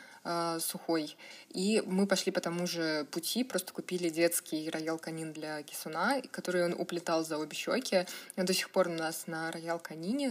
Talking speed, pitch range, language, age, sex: 165 wpm, 165-195 Hz, Russian, 20-39, female